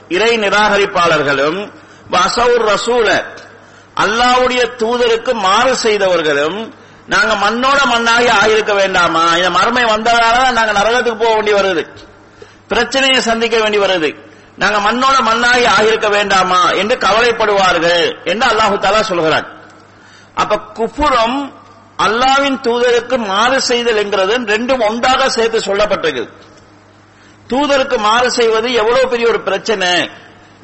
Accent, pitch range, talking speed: Indian, 200-245 Hz, 90 wpm